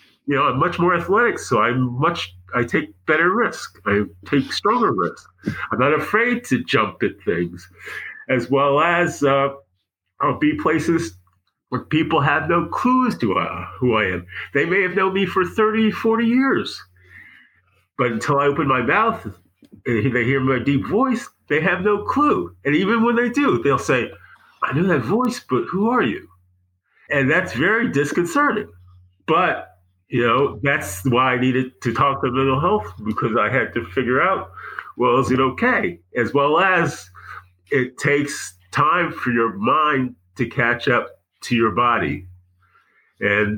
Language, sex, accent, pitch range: English, male, American, 95-160 Hz